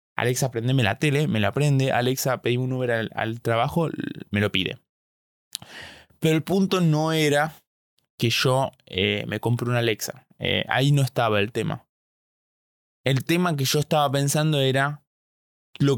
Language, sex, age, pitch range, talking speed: Spanish, male, 20-39, 115-140 Hz, 160 wpm